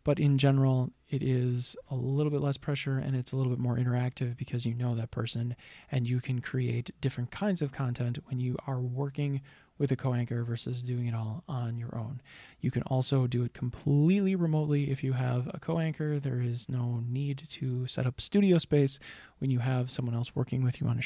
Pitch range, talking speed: 125-145 Hz, 215 wpm